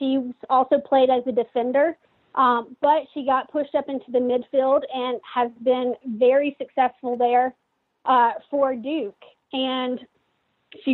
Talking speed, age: 145 wpm, 40-59